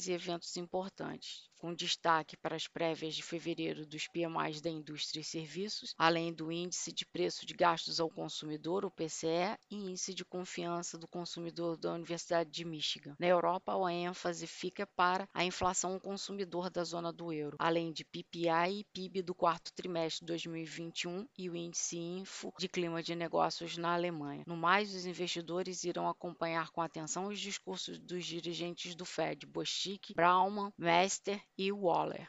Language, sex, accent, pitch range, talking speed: Portuguese, female, Brazilian, 165-185 Hz, 165 wpm